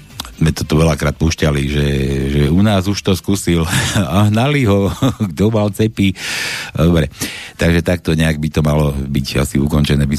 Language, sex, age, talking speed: Slovak, male, 60-79, 170 wpm